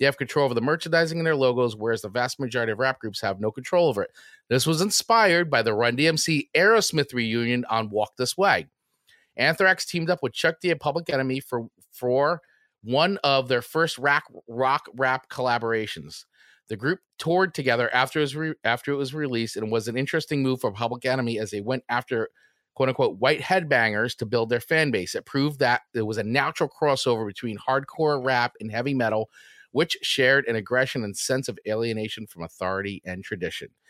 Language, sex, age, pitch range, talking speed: English, male, 30-49, 115-155 Hz, 190 wpm